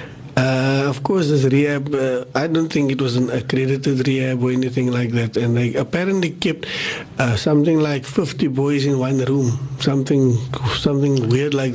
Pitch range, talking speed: 130-160 Hz, 175 wpm